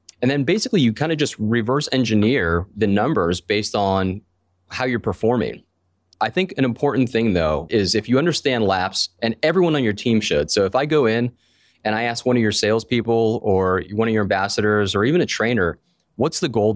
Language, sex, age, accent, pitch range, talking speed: English, male, 30-49, American, 100-120 Hz, 205 wpm